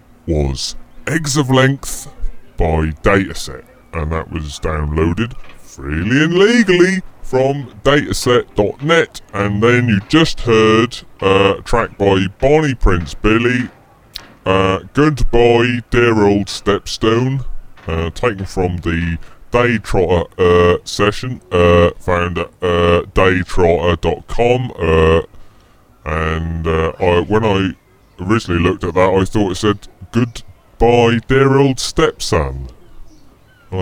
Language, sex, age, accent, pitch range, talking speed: English, female, 30-49, British, 90-130 Hz, 110 wpm